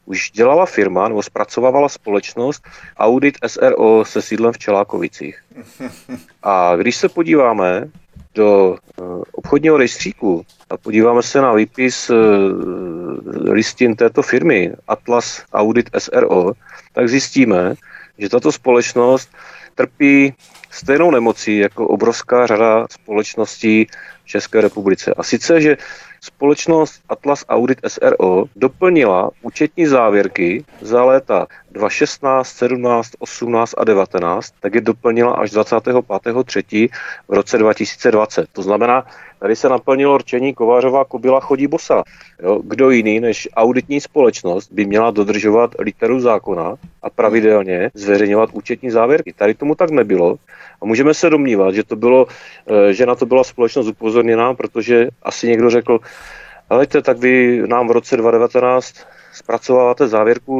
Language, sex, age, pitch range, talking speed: Czech, male, 40-59, 105-130 Hz, 125 wpm